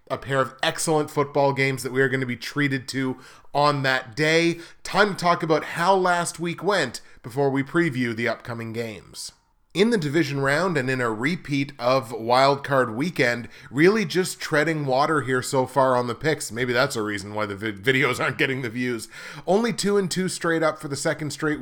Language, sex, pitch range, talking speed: English, male, 125-160 Hz, 205 wpm